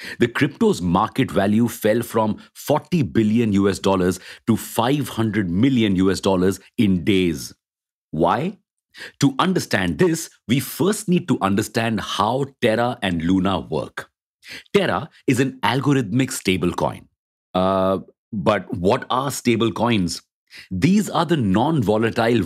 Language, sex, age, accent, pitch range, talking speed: English, male, 50-69, Indian, 95-130 Hz, 130 wpm